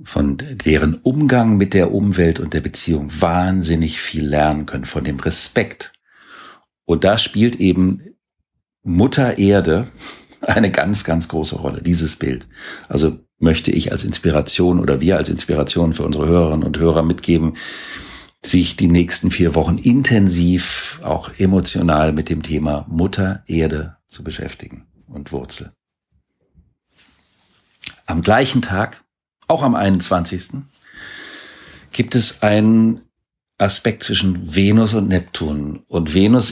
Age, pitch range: 50-69, 80-100 Hz